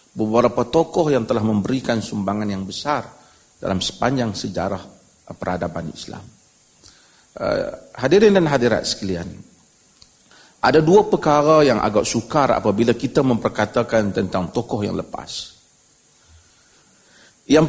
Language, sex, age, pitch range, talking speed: Malay, male, 40-59, 115-185 Hz, 110 wpm